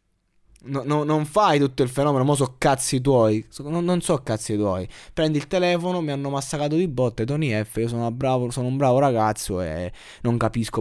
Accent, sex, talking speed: native, male, 205 wpm